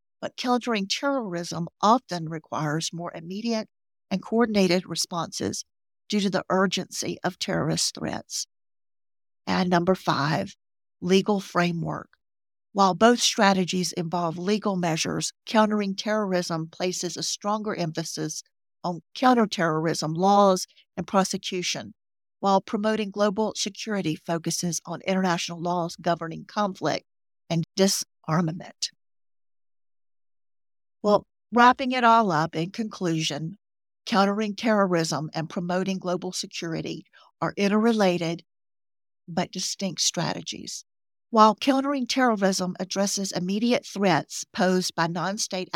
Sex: female